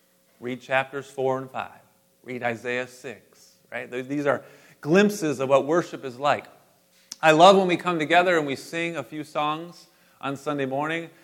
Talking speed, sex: 165 wpm, male